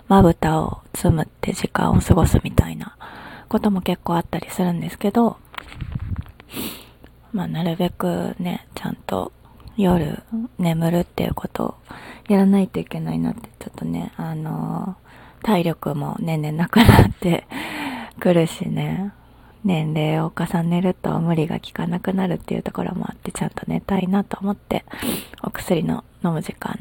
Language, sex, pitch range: Japanese, female, 170-205 Hz